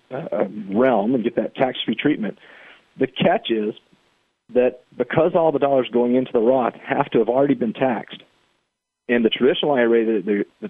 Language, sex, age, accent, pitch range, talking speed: English, male, 40-59, American, 110-140 Hz, 175 wpm